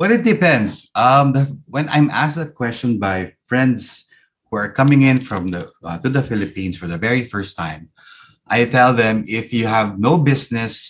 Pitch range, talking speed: 100-130 Hz, 185 wpm